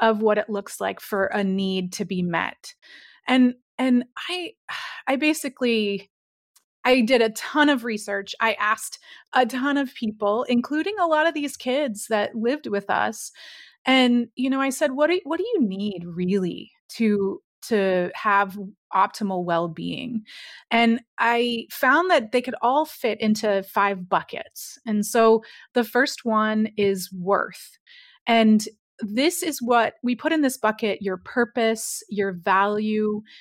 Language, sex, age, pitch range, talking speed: English, female, 30-49, 200-250 Hz, 155 wpm